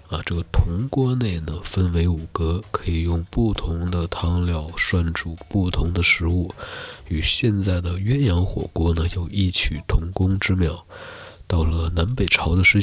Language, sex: Chinese, male